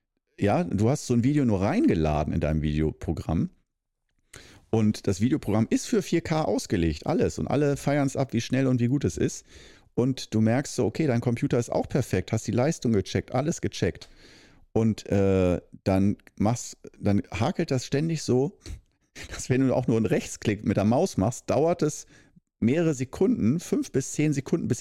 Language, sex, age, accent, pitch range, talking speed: German, male, 50-69, German, 100-140 Hz, 185 wpm